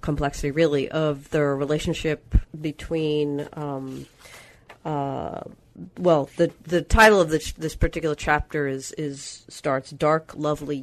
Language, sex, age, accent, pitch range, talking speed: English, female, 40-59, American, 140-160 Hz, 120 wpm